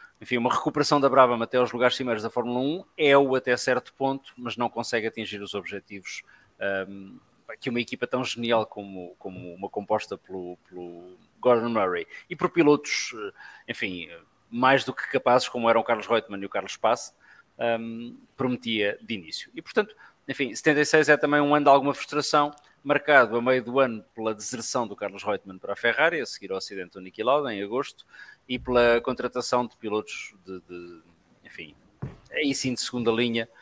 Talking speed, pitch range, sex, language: 185 wpm, 105-130 Hz, male, English